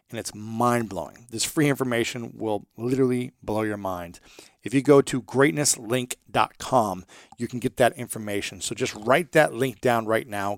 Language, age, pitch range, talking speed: English, 40-59, 115-145 Hz, 165 wpm